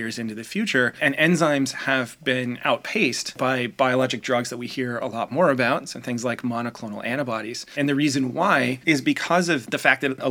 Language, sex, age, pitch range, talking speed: English, male, 30-49, 120-140 Hz, 210 wpm